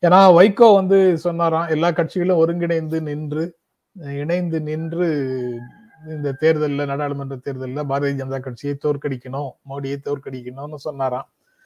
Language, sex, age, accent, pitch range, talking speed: Tamil, male, 30-49, native, 135-175 Hz, 110 wpm